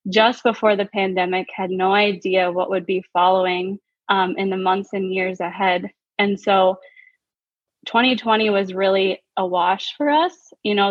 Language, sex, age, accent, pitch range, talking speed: English, female, 20-39, American, 190-225 Hz, 160 wpm